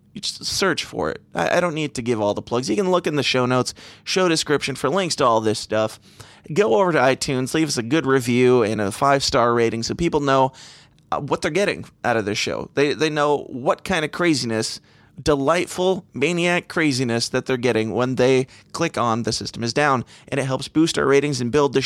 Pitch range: 120-160 Hz